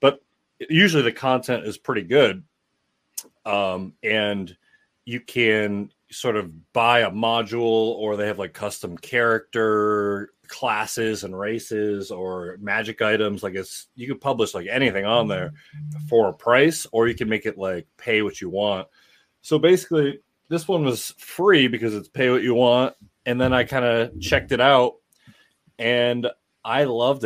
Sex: male